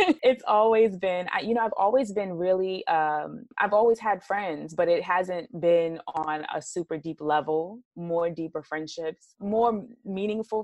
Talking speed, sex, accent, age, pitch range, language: 165 wpm, female, American, 20-39, 155-185 Hz, English